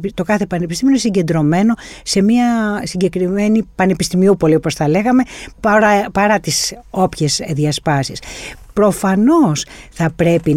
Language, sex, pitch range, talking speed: Greek, female, 155-230 Hz, 110 wpm